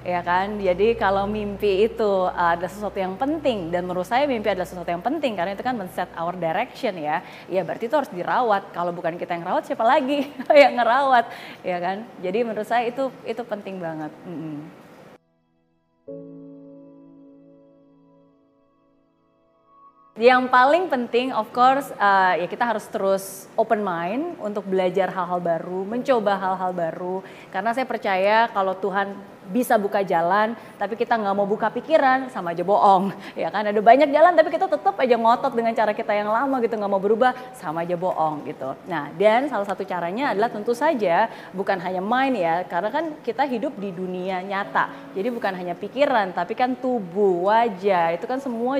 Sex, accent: female, native